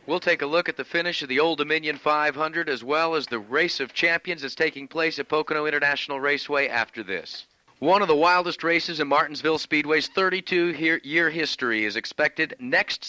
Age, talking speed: 50-69, 190 wpm